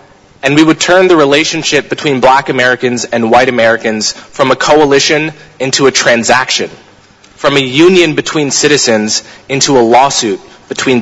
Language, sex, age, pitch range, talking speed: English, male, 20-39, 125-155 Hz, 145 wpm